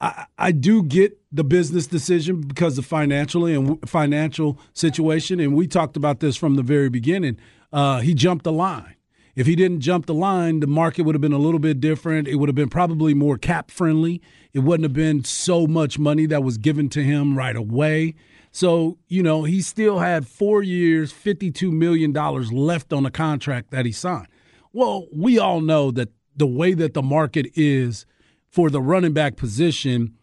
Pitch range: 140-170 Hz